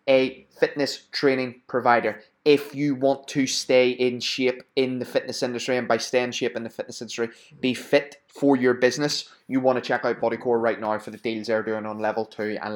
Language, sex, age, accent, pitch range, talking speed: English, male, 20-39, British, 110-135 Hz, 220 wpm